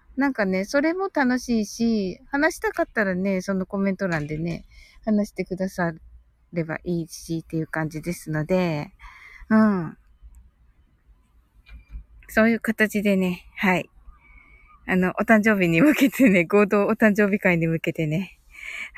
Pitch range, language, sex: 170-255 Hz, Japanese, female